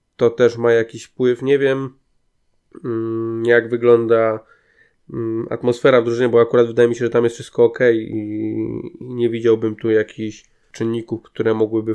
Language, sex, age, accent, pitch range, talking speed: Polish, male, 20-39, native, 110-120 Hz, 150 wpm